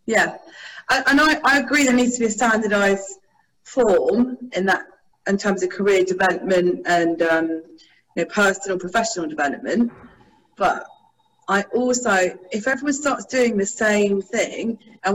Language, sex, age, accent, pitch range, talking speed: English, female, 40-59, British, 185-235 Hz, 145 wpm